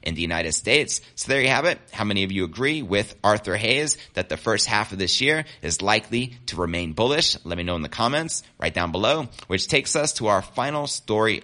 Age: 30-49